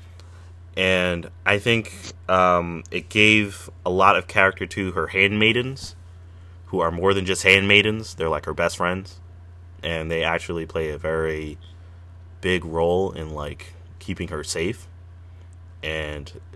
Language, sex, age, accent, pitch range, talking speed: English, male, 20-39, American, 85-95 Hz, 140 wpm